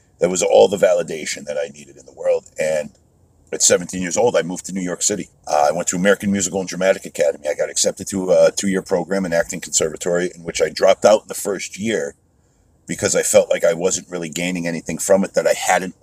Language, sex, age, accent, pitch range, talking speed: English, male, 50-69, American, 80-100 Hz, 240 wpm